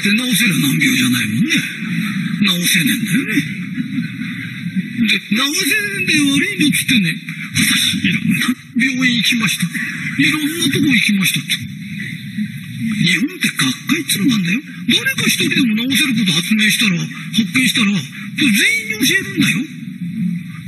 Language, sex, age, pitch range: Japanese, male, 50-69, 185-245 Hz